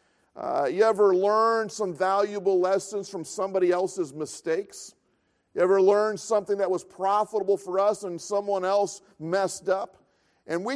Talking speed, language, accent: 150 wpm, English, American